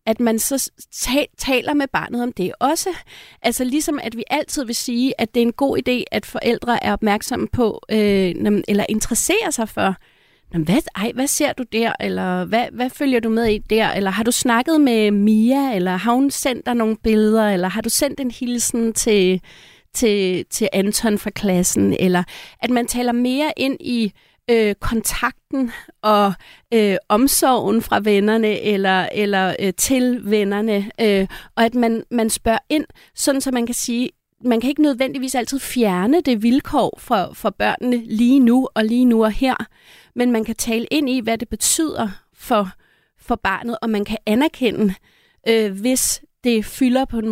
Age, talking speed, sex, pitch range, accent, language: 30-49, 175 wpm, female, 210-255 Hz, native, Danish